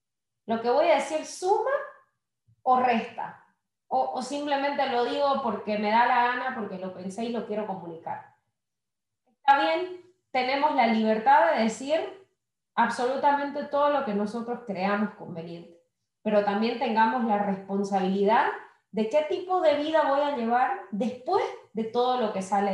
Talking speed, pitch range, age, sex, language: 155 wpm, 200-285 Hz, 20-39, female, Spanish